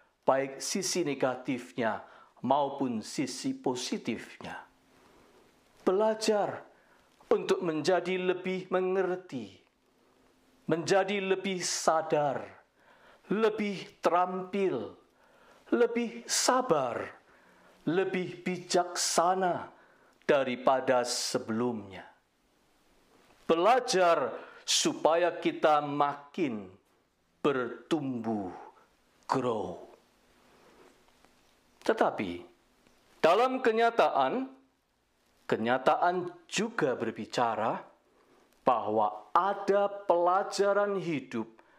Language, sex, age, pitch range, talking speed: Indonesian, male, 50-69, 155-210 Hz, 55 wpm